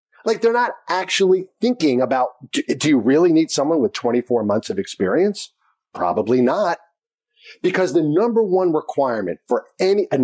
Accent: American